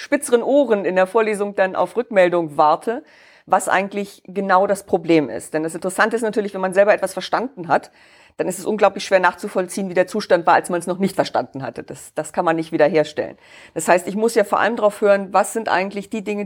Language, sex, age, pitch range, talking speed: English, female, 50-69, 175-210 Hz, 230 wpm